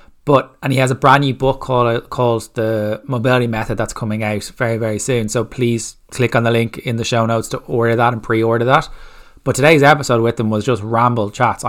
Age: 20-39